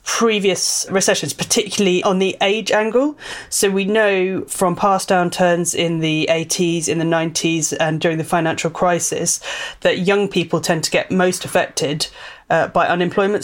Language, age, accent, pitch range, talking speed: English, 30-49, British, 170-200 Hz, 155 wpm